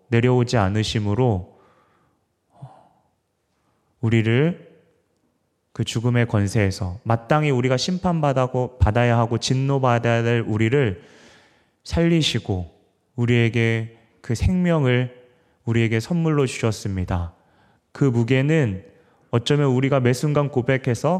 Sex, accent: male, native